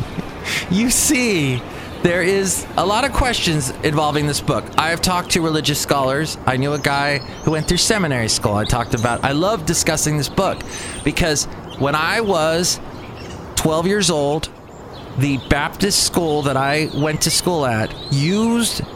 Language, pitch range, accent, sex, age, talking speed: English, 110-160 Hz, American, male, 30-49, 160 wpm